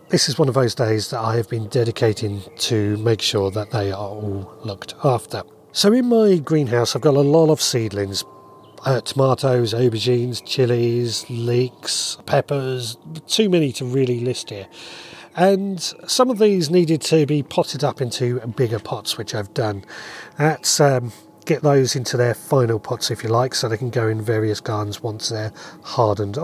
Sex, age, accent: male, 40-59, British